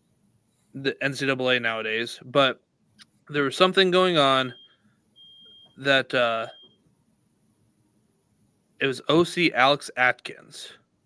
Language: English